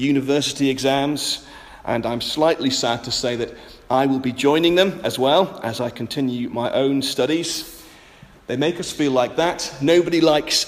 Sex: male